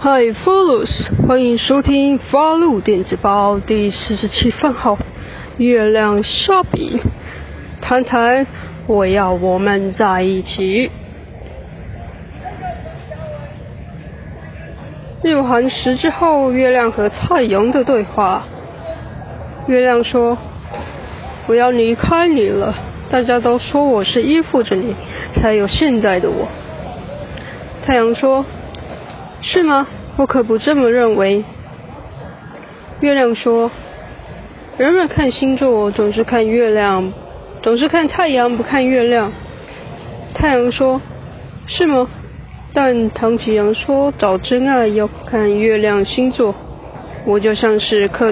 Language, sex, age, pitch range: Chinese, female, 20-39, 215-270 Hz